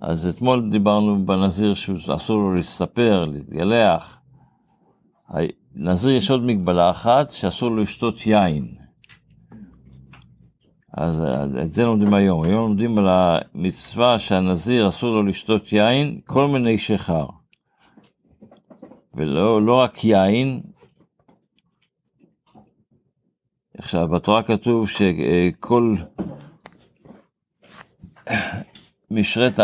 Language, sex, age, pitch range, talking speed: Hebrew, male, 60-79, 90-115 Hz, 85 wpm